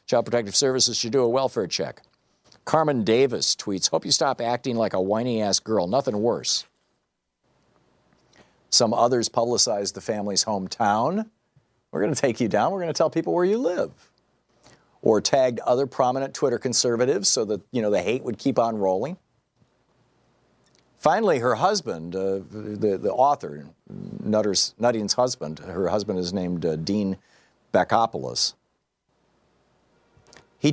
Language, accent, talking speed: English, American, 145 wpm